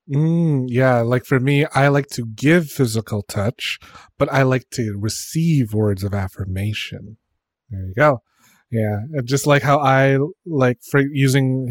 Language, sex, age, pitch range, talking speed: English, male, 30-49, 110-135 Hz, 155 wpm